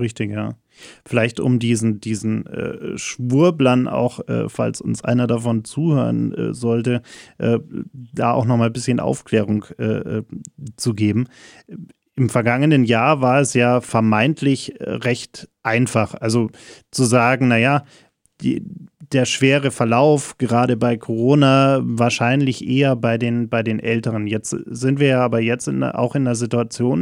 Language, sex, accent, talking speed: German, male, German, 140 wpm